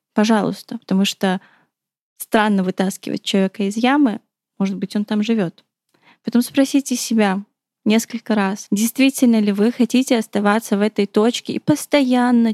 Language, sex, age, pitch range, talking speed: Russian, female, 20-39, 200-235 Hz, 135 wpm